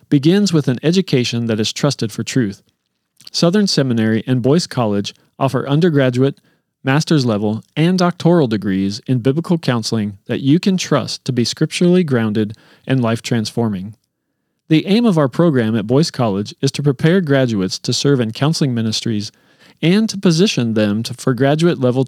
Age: 40-59